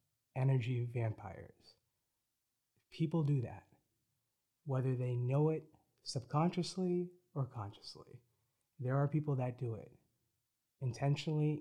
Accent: American